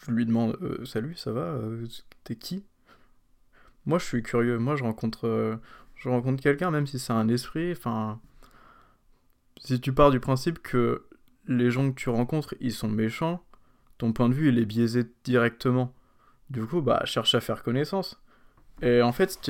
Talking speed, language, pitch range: 190 wpm, French, 110-130 Hz